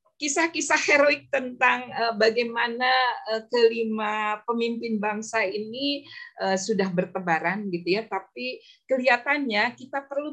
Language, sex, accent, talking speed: Indonesian, female, native, 95 wpm